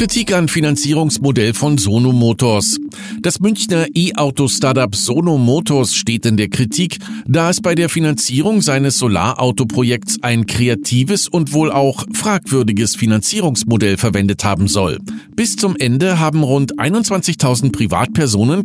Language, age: German, 50-69